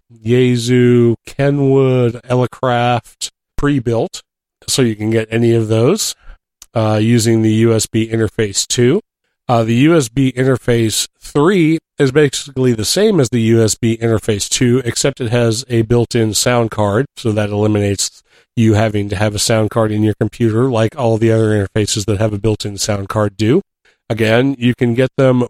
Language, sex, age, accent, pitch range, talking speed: English, male, 40-59, American, 110-125 Hz, 160 wpm